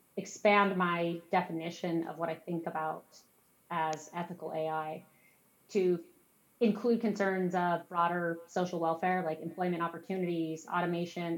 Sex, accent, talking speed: female, American, 115 wpm